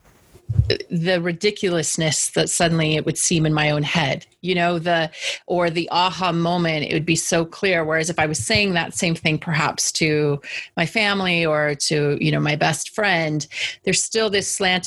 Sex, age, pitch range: female, 30-49, 155-180 Hz